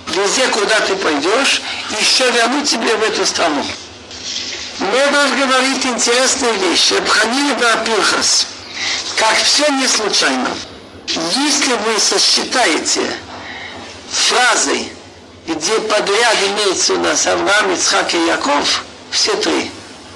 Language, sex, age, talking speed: Russian, male, 60-79, 100 wpm